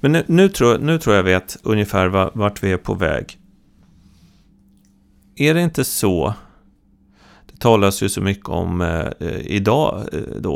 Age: 30-49